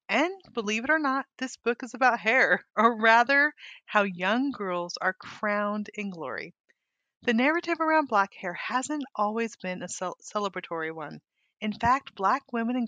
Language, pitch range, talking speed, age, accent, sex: English, 190-245 Hz, 165 wpm, 30-49, American, female